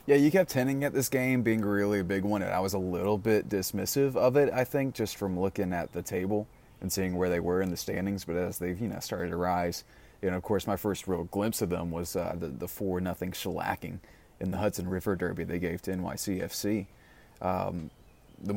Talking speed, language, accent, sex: 235 wpm, English, American, male